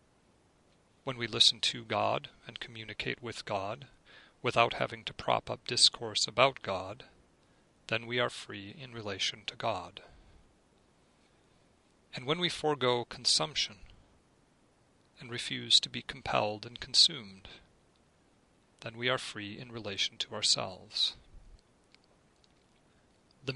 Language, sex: English, male